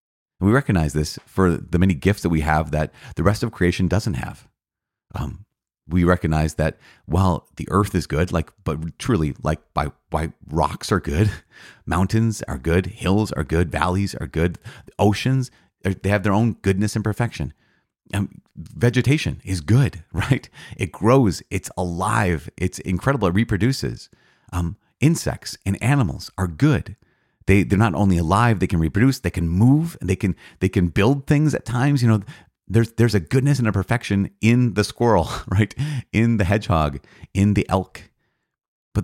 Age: 30-49